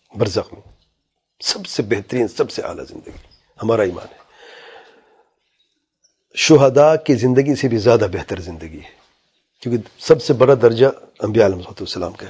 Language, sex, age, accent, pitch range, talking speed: English, male, 40-59, Indian, 120-155 Hz, 135 wpm